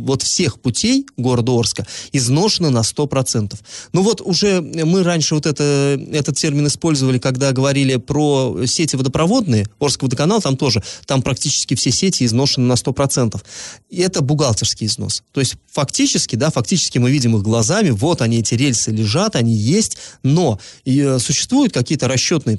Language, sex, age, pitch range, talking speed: Russian, male, 20-39, 120-160 Hz, 155 wpm